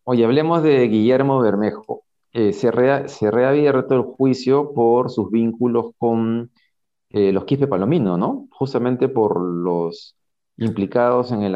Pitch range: 100-130 Hz